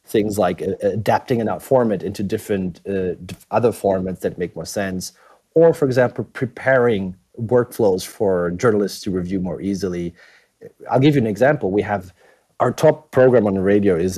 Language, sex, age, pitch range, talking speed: English, male, 30-49, 95-125 Hz, 170 wpm